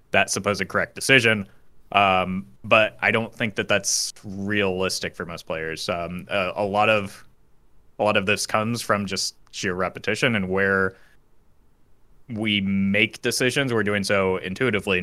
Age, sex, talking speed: 20-39, male, 150 wpm